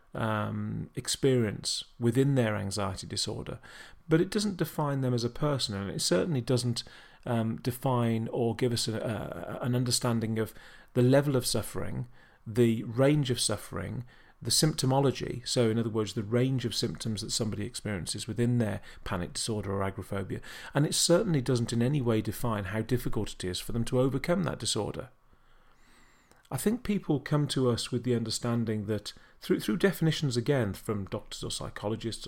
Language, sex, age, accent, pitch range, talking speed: English, male, 40-59, British, 110-135 Hz, 165 wpm